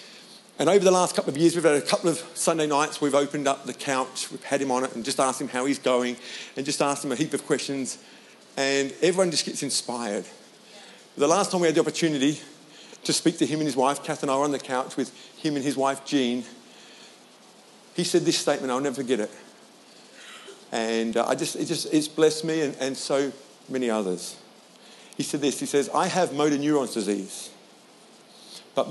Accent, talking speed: British, 205 wpm